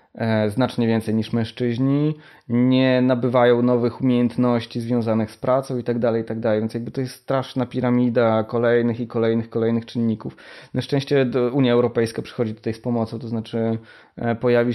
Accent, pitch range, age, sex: native, 115-130 Hz, 20-39, male